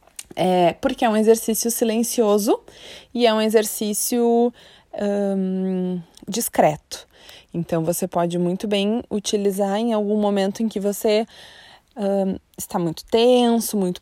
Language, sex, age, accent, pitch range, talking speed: Portuguese, female, 20-39, Brazilian, 185-235 Hz, 110 wpm